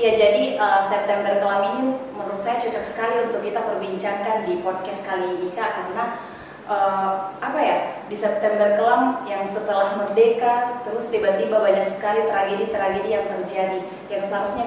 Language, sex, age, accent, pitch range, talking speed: Indonesian, female, 20-39, native, 190-215 Hz, 150 wpm